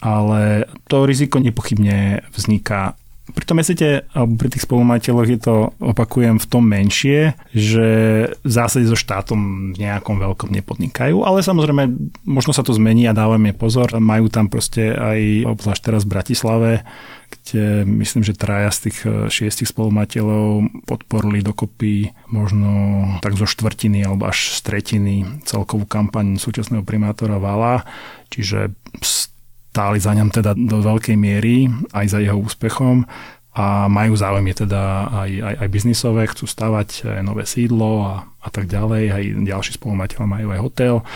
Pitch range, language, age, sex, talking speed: 105-120 Hz, Slovak, 30-49, male, 145 wpm